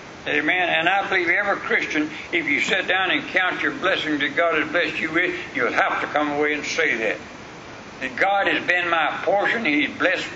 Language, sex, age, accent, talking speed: English, male, 60-79, American, 210 wpm